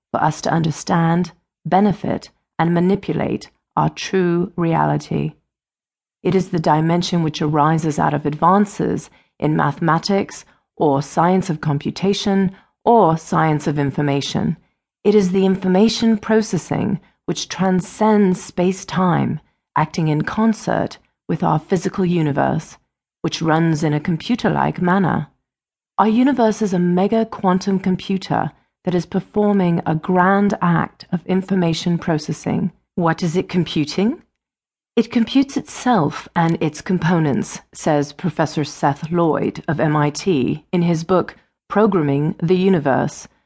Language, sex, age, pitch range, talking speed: English, female, 40-59, 155-195 Hz, 120 wpm